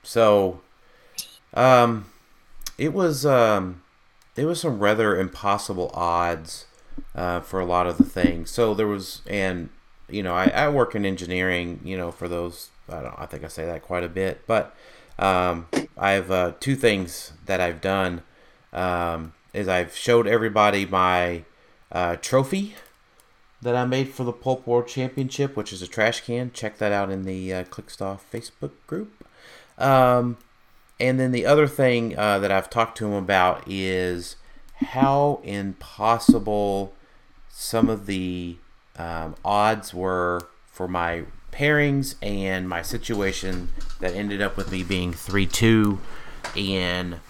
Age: 30-49